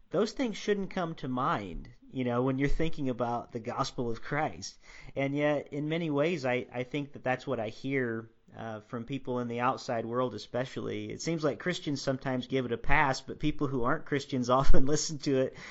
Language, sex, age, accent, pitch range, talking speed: English, male, 40-59, American, 120-145 Hz, 210 wpm